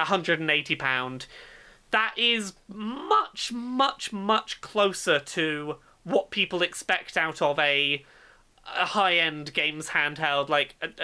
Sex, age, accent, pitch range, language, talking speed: male, 30-49, British, 155-230 Hz, English, 110 wpm